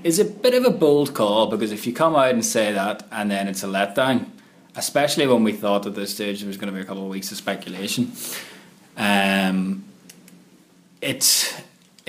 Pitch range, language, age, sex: 95-110 Hz, English, 20-39, male